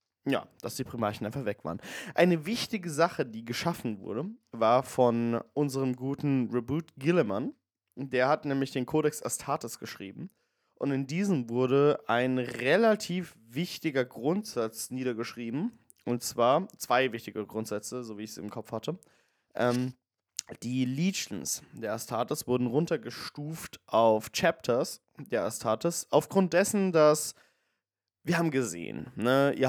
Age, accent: 20-39, German